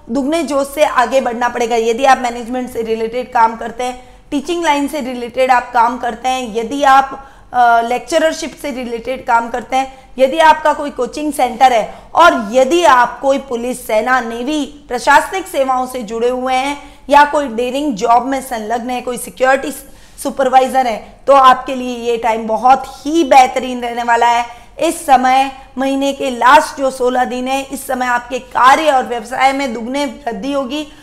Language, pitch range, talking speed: Hindi, 245-285 Hz, 175 wpm